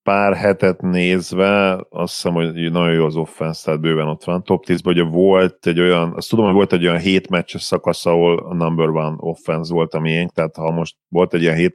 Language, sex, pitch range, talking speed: Hungarian, male, 80-95 Hz, 230 wpm